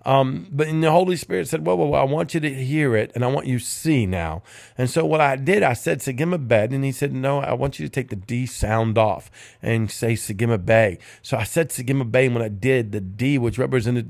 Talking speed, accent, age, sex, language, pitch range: 250 wpm, American, 50-69, male, English, 115-140 Hz